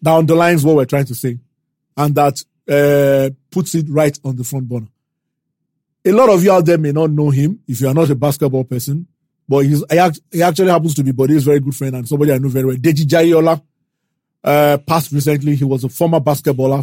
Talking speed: 230 wpm